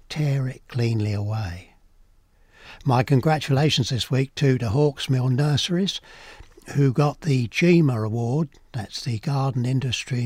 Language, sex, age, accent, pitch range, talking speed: English, male, 60-79, British, 115-145 Hz, 125 wpm